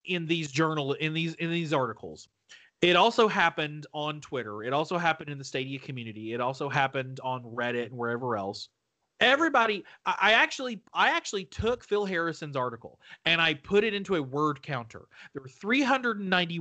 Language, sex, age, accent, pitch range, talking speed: English, male, 30-49, American, 140-200 Hz, 175 wpm